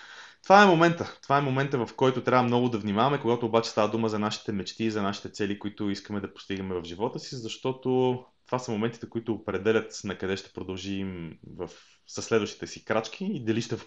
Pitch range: 100-130 Hz